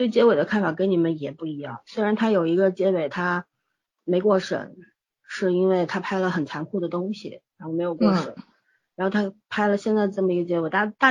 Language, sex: Chinese, female